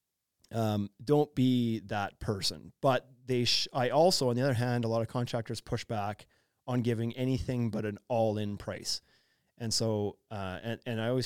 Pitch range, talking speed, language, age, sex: 105-125 Hz, 180 wpm, English, 30-49, male